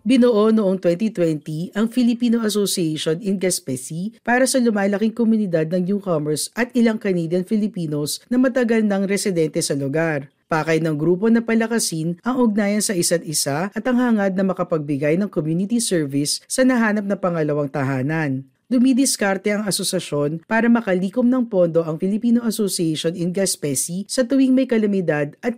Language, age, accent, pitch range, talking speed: Filipino, 50-69, native, 155-220 Hz, 150 wpm